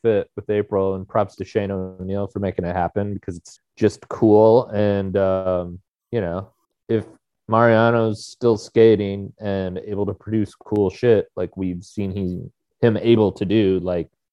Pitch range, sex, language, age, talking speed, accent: 95-115 Hz, male, English, 30-49, 165 wpm, American